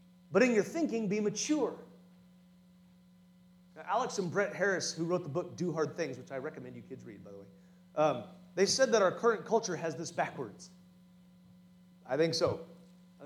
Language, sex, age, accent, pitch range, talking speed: English, male, 30-49, American, 175-225 Hz, 180 wpm